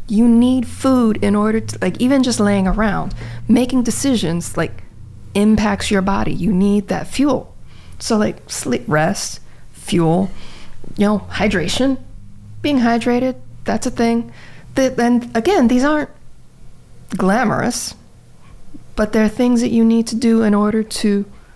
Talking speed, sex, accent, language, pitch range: 140 wpm, female, American, English, 180-225 Hz